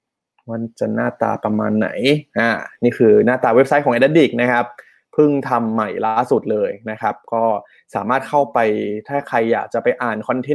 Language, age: Thai, 20-39